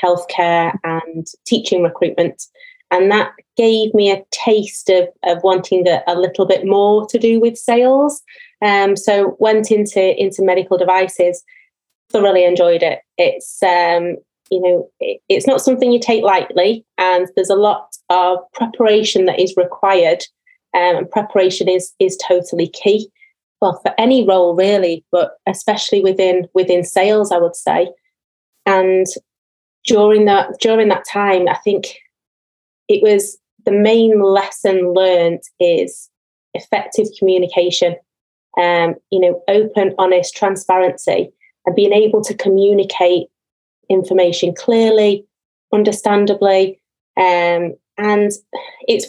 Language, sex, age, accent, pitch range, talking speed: English, female, 30-49, British, 180-215 Hz, 130 wpm